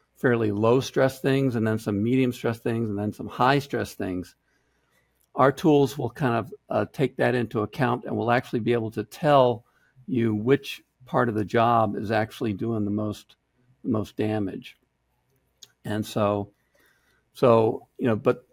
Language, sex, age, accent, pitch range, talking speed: English, male, 50-69, American, 105-130 Hz, 170 wpm